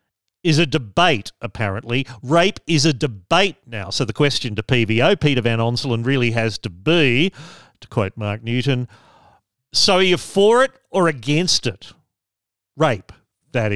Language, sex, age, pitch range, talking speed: English, male, 40-59, 105-140 Hz, 155 wpm